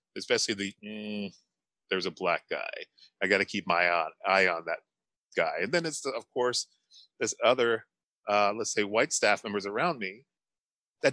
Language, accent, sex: English, American, male